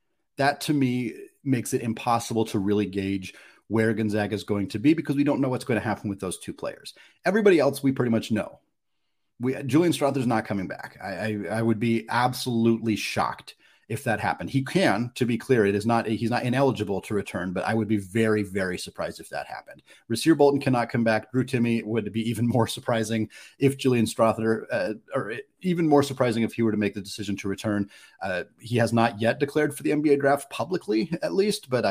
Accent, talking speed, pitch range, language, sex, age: American, 215 wpm, 105-130 Hz, English, male, 30-49